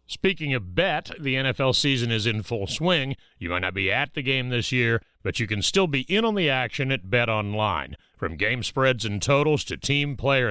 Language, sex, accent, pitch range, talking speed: English, male, American, 105-140 Hz, 215 wpm